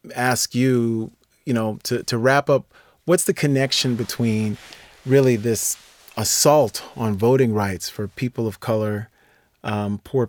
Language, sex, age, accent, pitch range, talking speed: English, male, 30-49, American, 110-125 Hz, 140 wpm